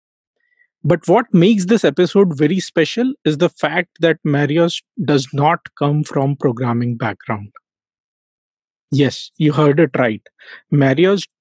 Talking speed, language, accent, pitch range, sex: 125 wpm, English, Indian, 130-170 Hz, male